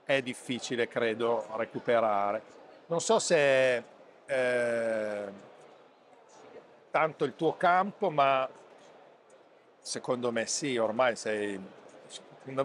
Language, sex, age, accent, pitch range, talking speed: Italian, male, 50-69, native, 115-145 Hz, 90 wpm